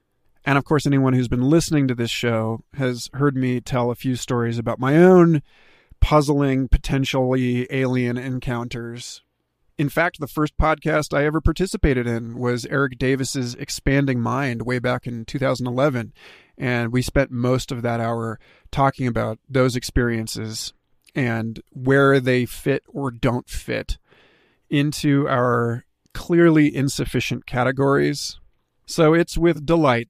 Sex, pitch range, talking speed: male, 120-145 Hz, 140 wpm